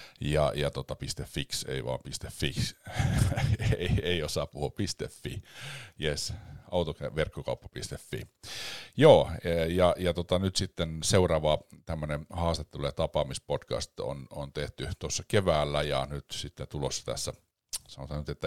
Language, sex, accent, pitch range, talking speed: Finnish, male, native, 70-85 Hz, 120 wpm